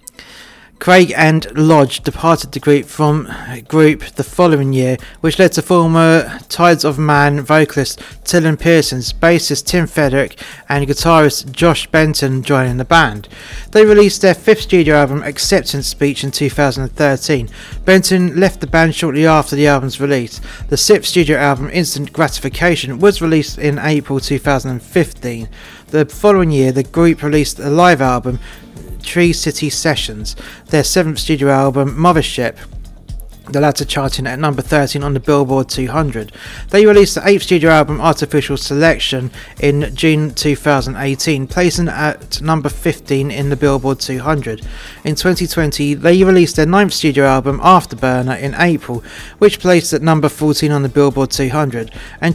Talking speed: 145 wpm